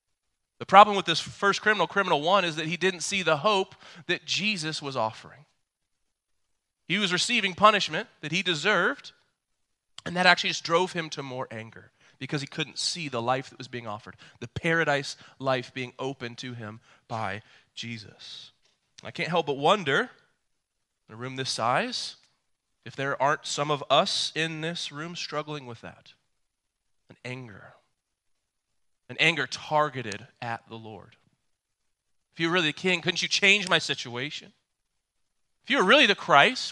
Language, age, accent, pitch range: English, 30-49, American, 115-165 Hz